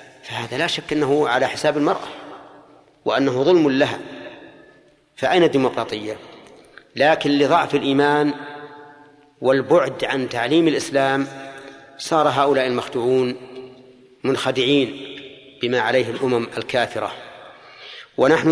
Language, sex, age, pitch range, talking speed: Arabic, male, 40-59, 125-145 Hz, 90 wpm